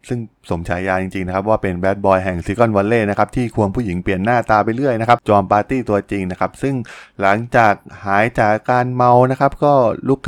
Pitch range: 100-125 Hz